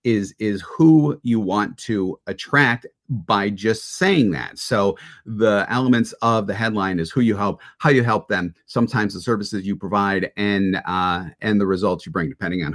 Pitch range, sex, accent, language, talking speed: 95-115 Hz, male, American, English, 185 wpm